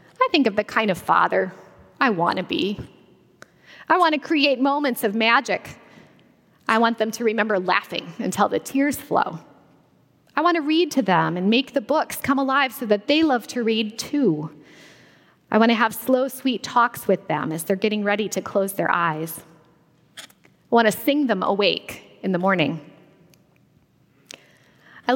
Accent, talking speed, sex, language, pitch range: American, 175 wpm, female, English, 205-280 Hz